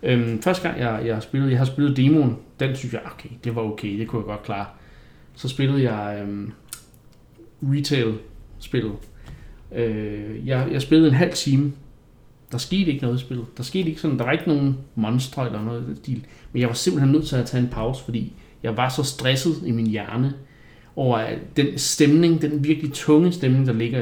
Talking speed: 200 wpm